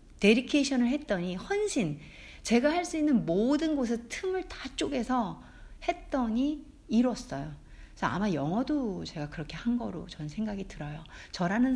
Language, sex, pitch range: Korean, female, 160-260 Hz